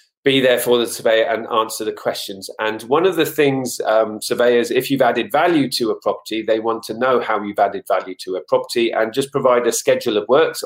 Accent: British